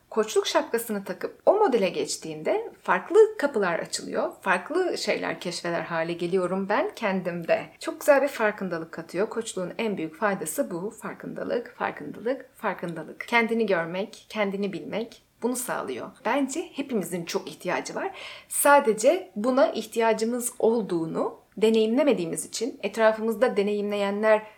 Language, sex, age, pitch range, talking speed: Turkish, female, 30-49, 200-280 Hz, 115 wpm